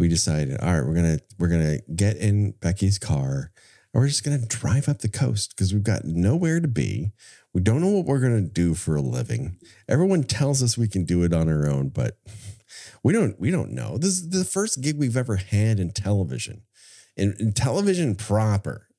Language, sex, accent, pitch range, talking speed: English, male, American, 90-125 Hz, 210 wpm